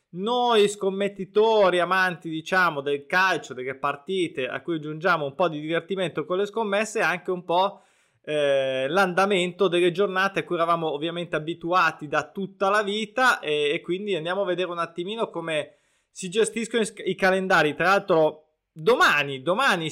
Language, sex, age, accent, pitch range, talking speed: Italian, male, 20-39, native, 160-190 Hz, 160 wpm